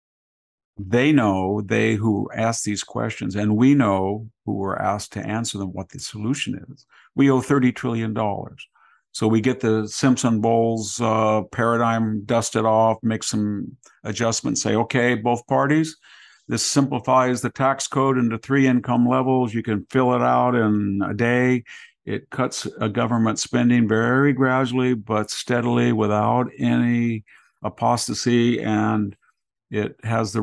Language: English